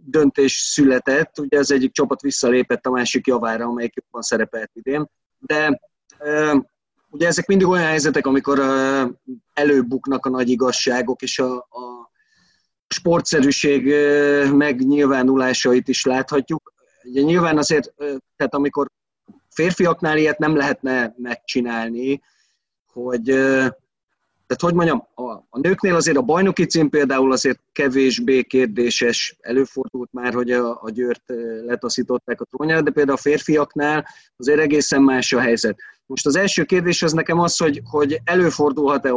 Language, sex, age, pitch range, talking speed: Hungarian, male, 30-49, 125-150 Hz, 125 wpm